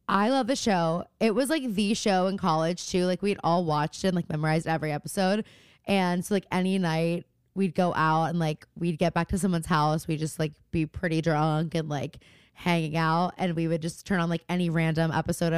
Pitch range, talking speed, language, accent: 160-200 Hz, 225 wpm, English, American